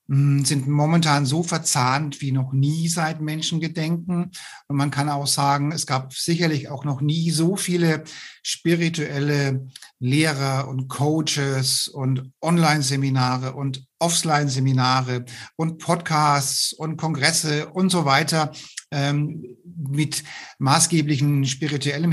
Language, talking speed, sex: German, 110 wpm, male